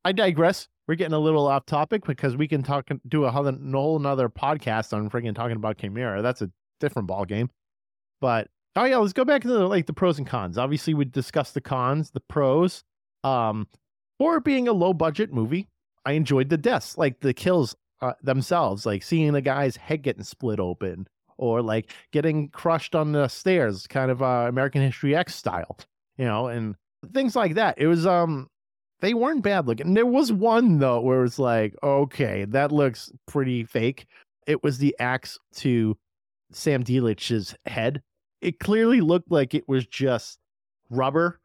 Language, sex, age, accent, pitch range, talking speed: English, male, 30-49, American, 120-170 Hz, 185 wpm